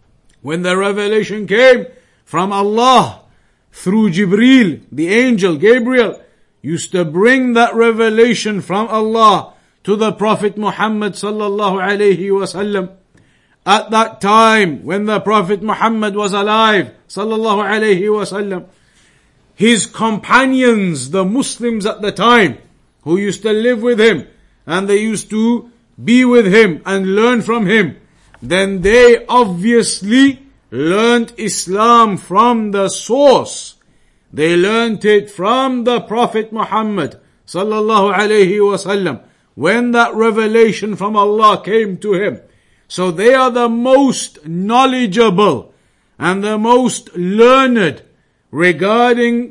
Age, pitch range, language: 50-69, 195-235 Hz, English